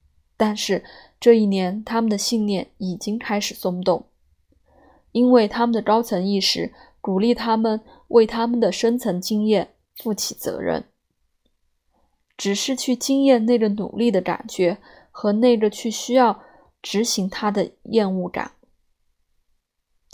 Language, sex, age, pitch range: Chinese, female, 20-39, 180-230 Hz